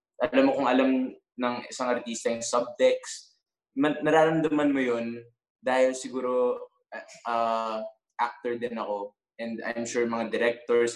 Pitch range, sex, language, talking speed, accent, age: 110-135 Hz, male, English, 110 wpm, Filipino, 20-39